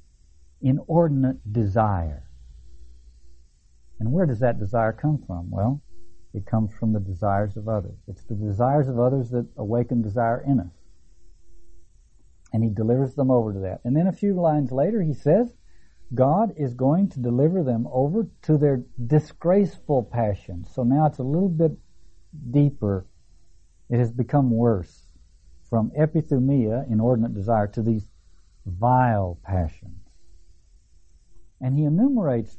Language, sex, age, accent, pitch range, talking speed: English, male, 60-79, American, 95-130 Hz, 140 wpm